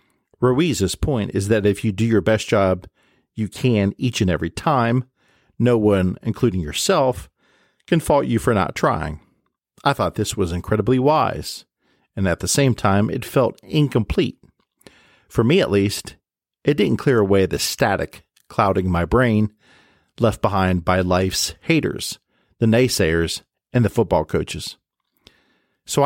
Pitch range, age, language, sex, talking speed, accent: 95-120 Hz, 50-69, English, male, 150 wpm, American